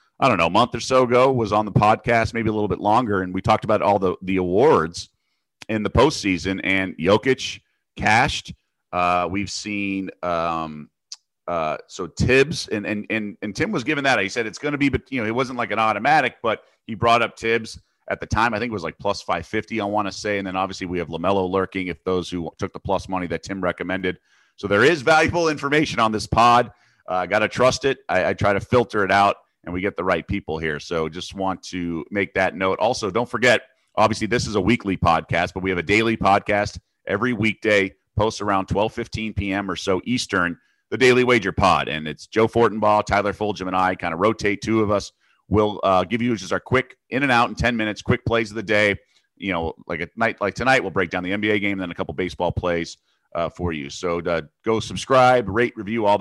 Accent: American